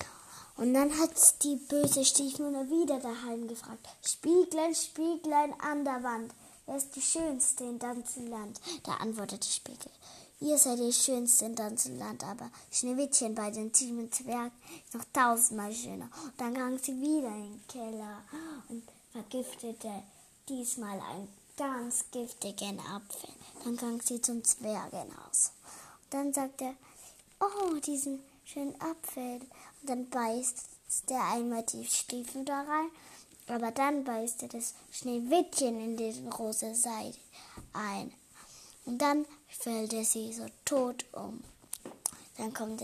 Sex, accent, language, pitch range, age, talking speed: female, German, German, 230-285 Hz, 10-29, 135 wpm